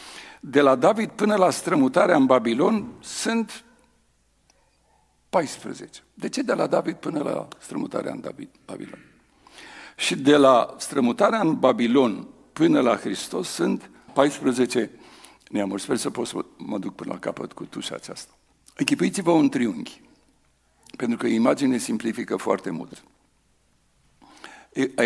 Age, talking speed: 60-79, 130 wpm